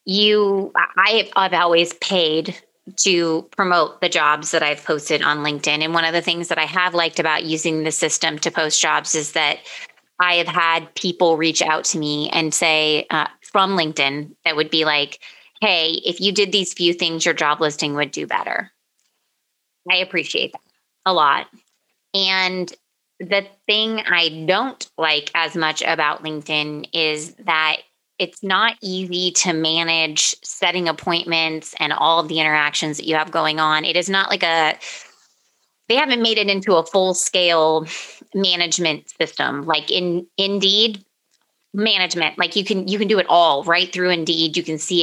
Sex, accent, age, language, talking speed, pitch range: female, American, 30-49, English, 170 wpm, 155-185 Hz